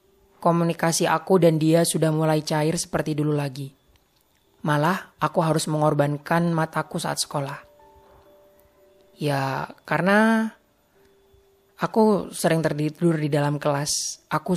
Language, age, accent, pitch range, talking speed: Indonesian, 20-39, native, 150-170 Hz, 105 wpm